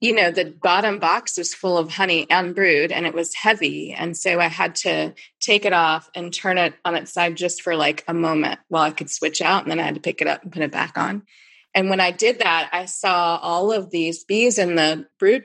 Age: 20-39